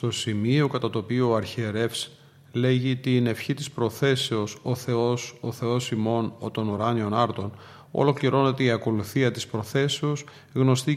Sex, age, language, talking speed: male, 40-59, Greek, 150 wpm